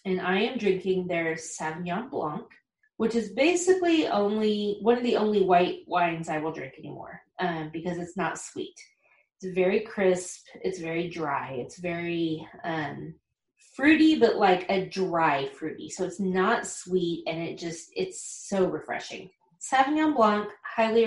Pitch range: 180-240 Hz